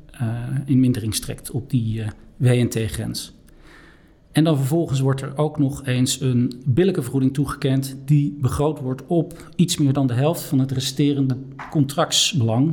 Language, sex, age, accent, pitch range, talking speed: Dutch, male, 40-59, Dutch, 125-150 Hz, 160 wpm